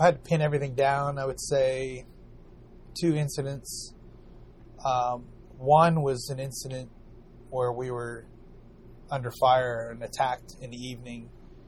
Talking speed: 135 wpm